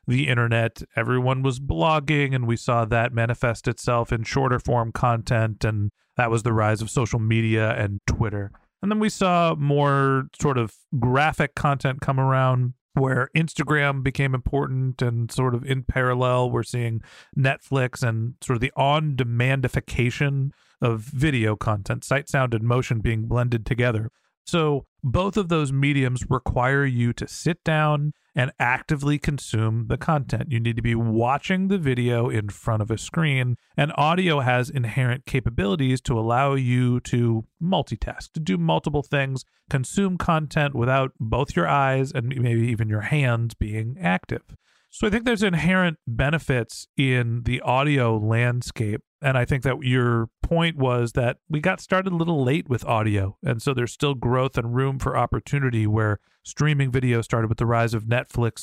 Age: 40-59